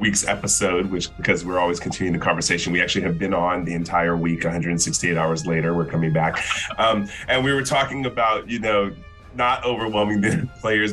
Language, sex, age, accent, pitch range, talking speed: English, male, 30-49, American, 85-110 Hz, 190 wpm